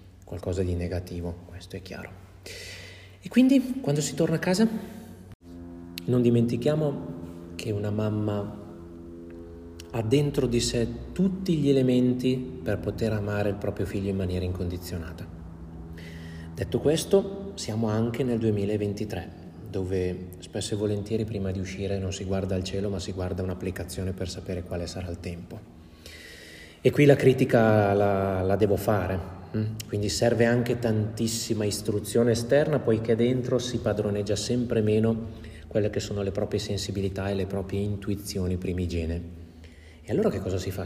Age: 30-49